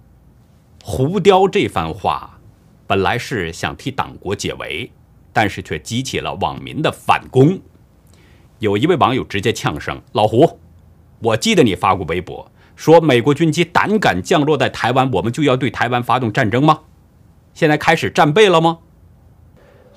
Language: Chinese